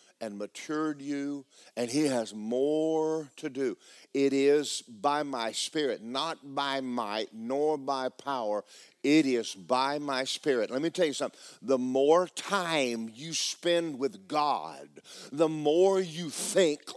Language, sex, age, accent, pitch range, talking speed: English, male, 50-69, American, 130-180 Hz, 145 wpm